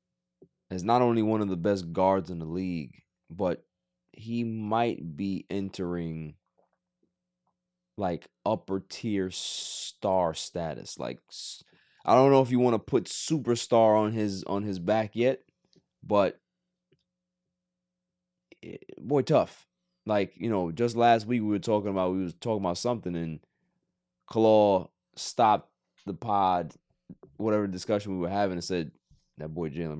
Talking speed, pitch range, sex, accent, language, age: 140 wpm, 85-110 Hz, male, American, English, 20-39